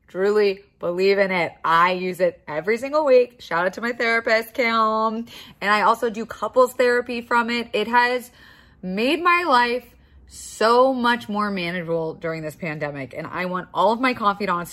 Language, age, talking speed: English, 20-39, 175 wpm